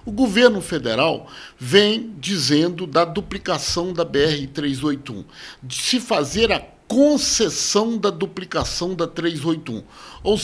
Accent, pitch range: Brazilian, 140-210 Hz